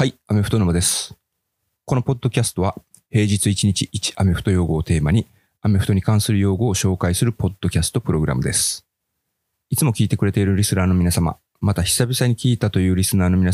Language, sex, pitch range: Japanese, male, 90-110 Hz